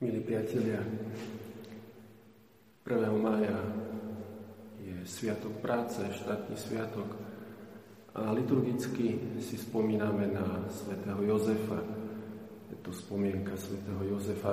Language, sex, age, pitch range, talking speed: Slovak, male, 40-59, 105-110 Hz, 85 wpm